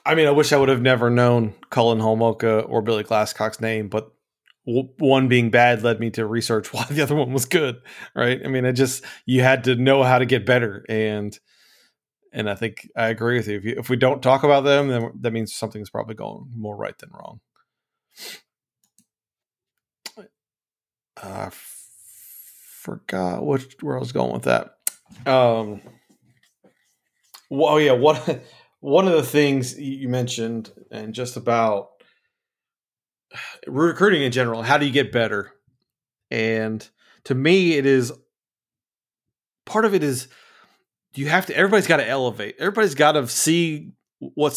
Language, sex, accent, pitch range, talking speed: English, male, American, 115-140 Hz, 165 wpm